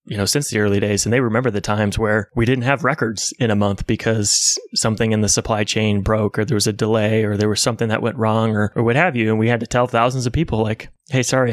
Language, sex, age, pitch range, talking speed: English, male, 20-39, 105-125 Hz, 280 wpm